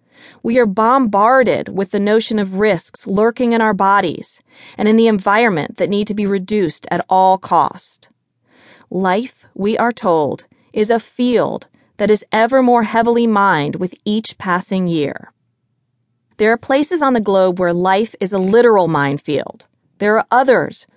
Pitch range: 165-220 Hz